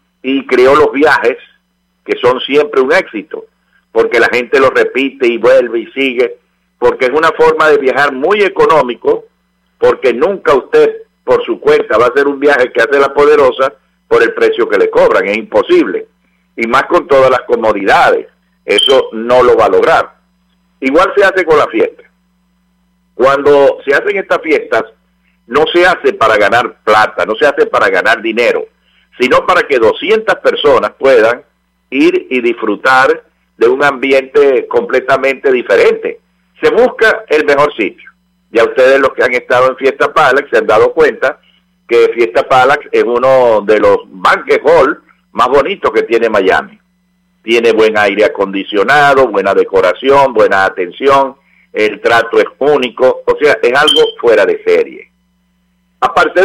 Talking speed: 160 wpm